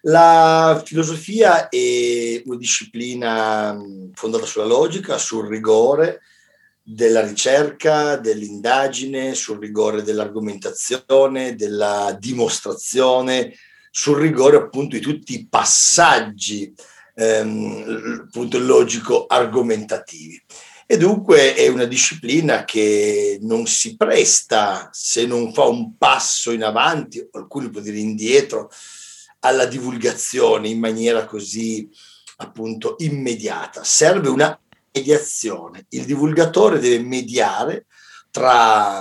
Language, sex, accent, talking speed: Italian, male, native, 95 wpm